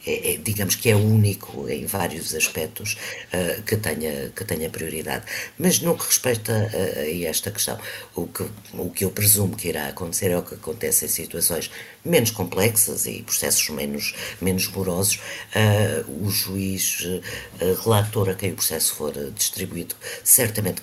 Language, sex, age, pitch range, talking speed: Portuguese, female, 50-69, 95-115 Hz, 145 wpm